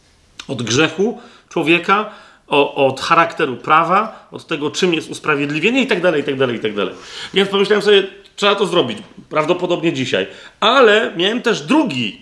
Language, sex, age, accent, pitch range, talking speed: Polish, male, 40-59, native, 150-200 Hz, 155 wpm